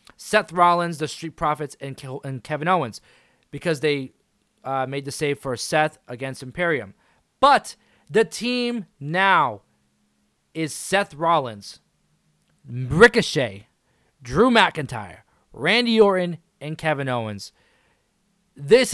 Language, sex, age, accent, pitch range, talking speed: English, male, 20-39, American, 130-180 Hz, 110 wpm